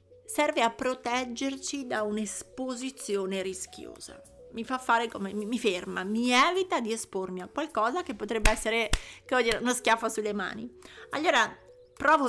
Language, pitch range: Italian, 200-255 Hz